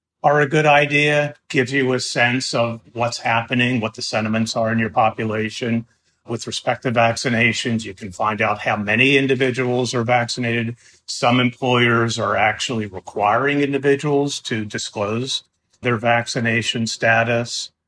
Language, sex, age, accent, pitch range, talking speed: English, male, 50-69, American, 110-135 Hz, 140 wpm